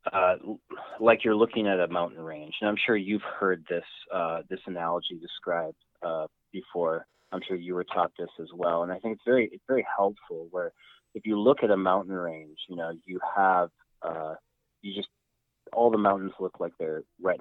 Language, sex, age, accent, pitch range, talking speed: English, male, 30-49, American, 95-135 Hz, 200 wpm